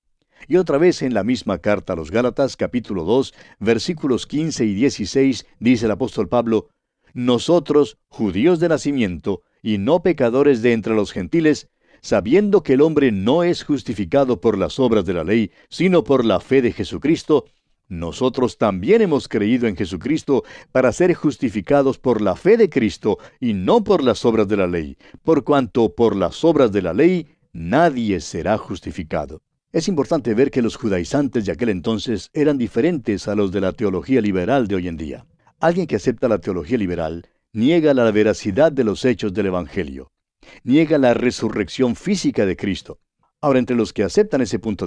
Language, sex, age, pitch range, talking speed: Spanish, male, 60-79, 100-145 Hz, 175 wpm